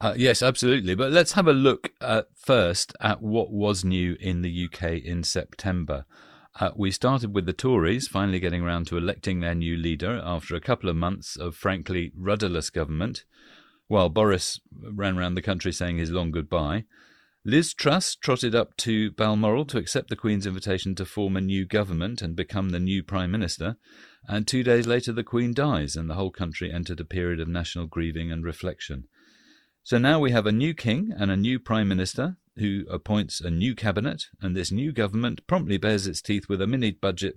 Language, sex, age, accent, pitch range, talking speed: English, male, 40-59, British, 90-115 Hz, 195 wpm